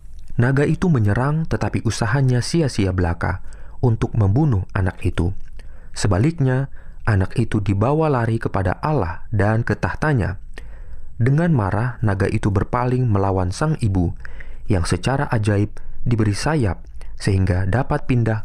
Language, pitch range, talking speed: Indonesian, 95-130 Hz, 120 wpm